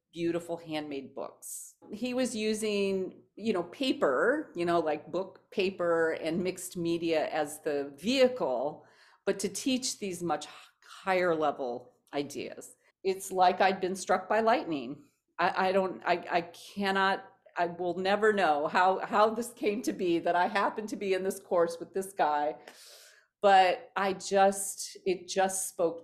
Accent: American